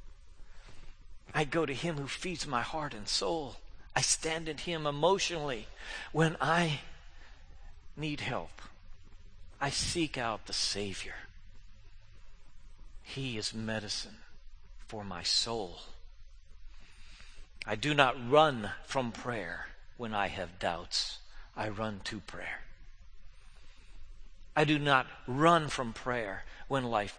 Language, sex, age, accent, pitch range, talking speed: English, male, 50-69, American, 90-140 Hz, 115 wpm